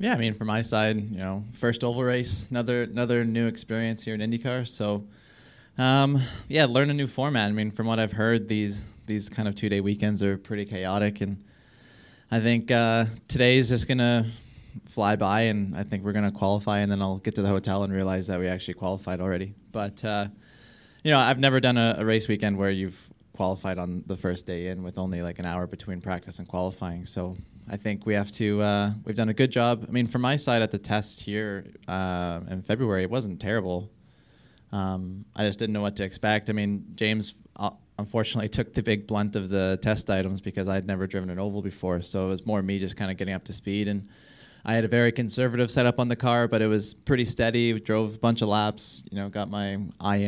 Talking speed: 230 wpm